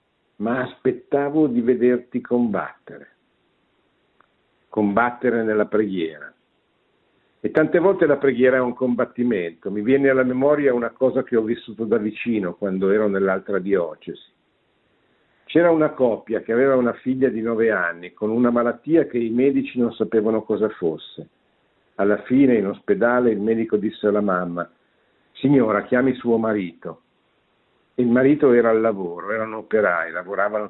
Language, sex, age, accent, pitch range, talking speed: Italian, male, 50-69, native, 105-130 Hz, 140 wpm